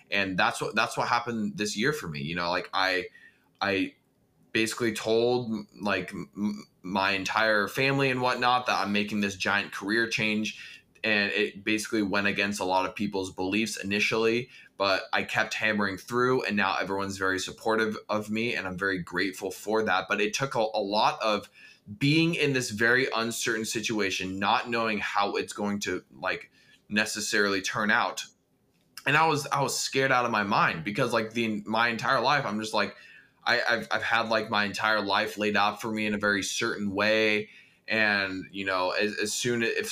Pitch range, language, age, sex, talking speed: 100-115 Hz, English, 20-39, male, 190 wpm